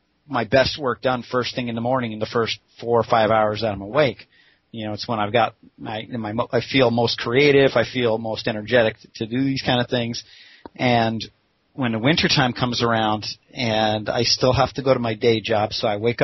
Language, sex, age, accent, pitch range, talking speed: English, male, 40-59, American, 110-130 Hz, 220 wpm